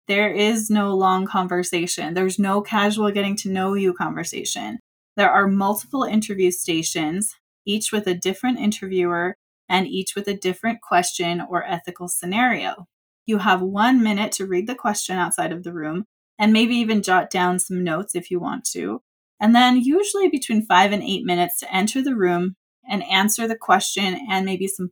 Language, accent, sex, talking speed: English, American, female, 180 wpm